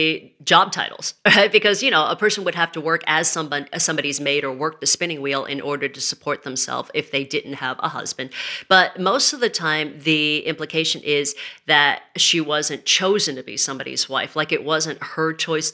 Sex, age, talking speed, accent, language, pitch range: female, 40-59, 200 wpm, American, English, 145-165 Hz